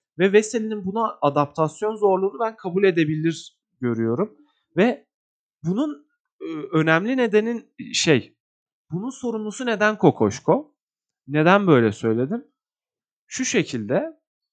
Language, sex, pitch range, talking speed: Turkish, male, 145-215 Hz, 95 wpm